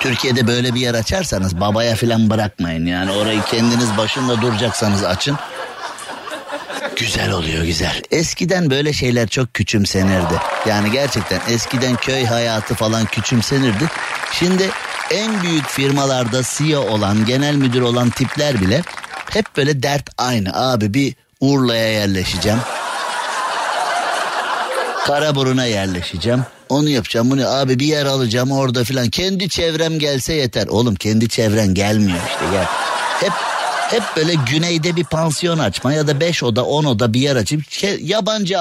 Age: 50-69